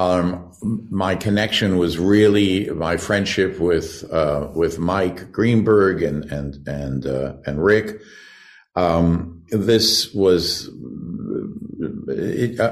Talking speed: 105 wpm